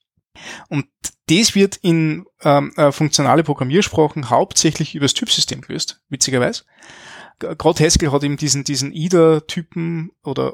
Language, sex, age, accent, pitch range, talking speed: German, male, 20-39, Austrian, 135-165 Hz, 130 wpm